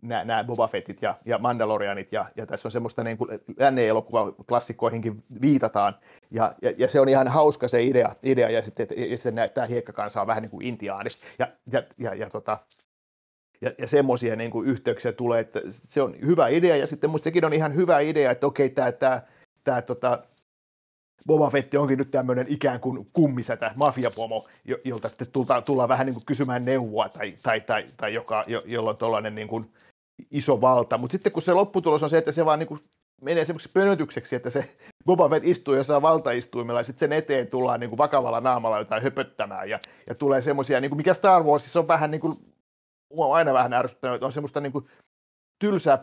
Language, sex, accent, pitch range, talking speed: Finnish, male, native, 120-150 Hz, 200 wpm